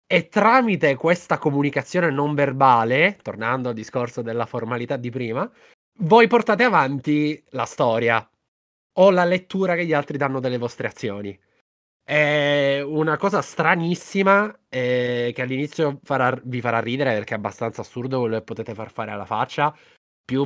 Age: 20-39